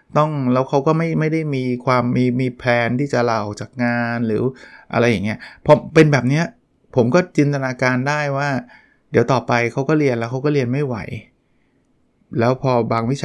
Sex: male